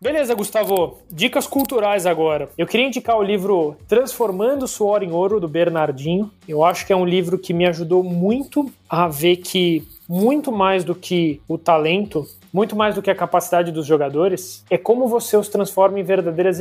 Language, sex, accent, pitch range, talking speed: Portuguese, male, Brazilian, 170-205 Hz, 185 wpm